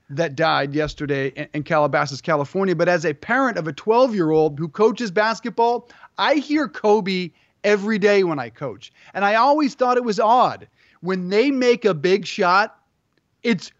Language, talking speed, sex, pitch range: English, 165 wpm, male, 165-215 Hz